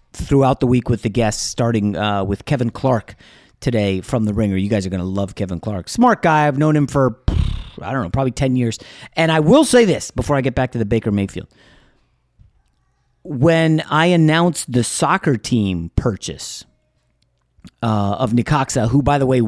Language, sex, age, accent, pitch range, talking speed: English, male, 30-49, American, 105-150 Hz, 190 wpm